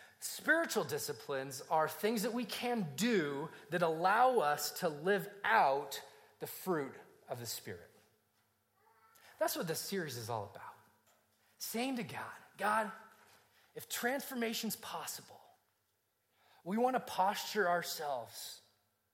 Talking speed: 120 wpm